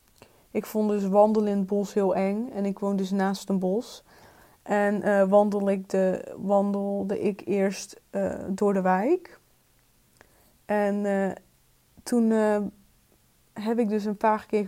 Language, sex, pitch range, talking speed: Dutch, female, 190-210 Hz, 155 wpm